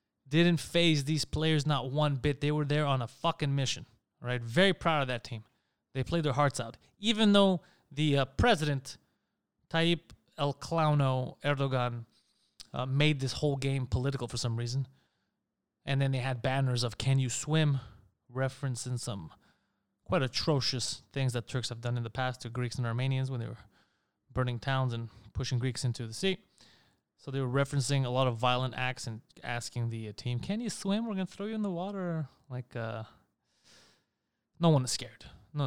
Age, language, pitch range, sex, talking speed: 20-39, English, 125-155 Hz, male, 185 wpm